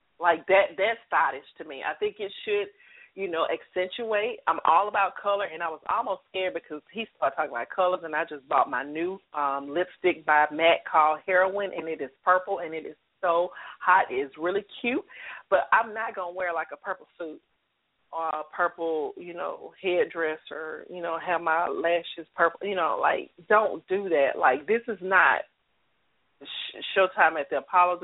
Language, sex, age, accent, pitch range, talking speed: English, female, 40-59, American, 165-225 Hz, 190 wpm